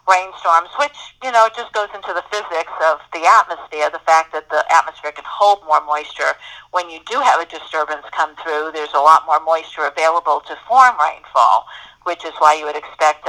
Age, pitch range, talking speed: 50-69, 160-195 Hz, 205 wpm